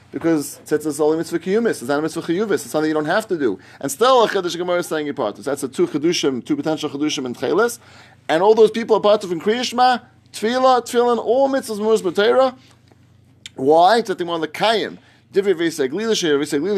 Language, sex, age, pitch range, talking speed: English, male, 30-49, 155-220 Hz, 150 wpm